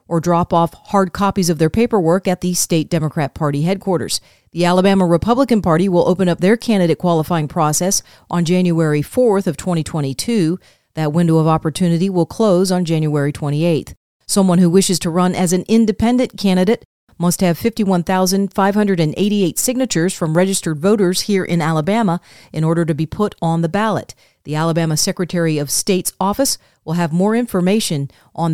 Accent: American